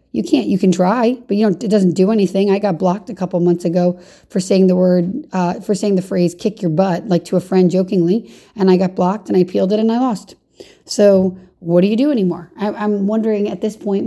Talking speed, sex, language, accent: 250 wpm, female, English, American